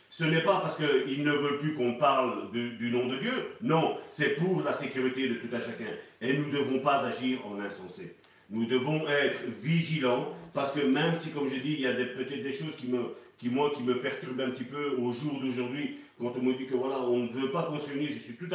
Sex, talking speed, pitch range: male, 255 wpm, 130-170 Hz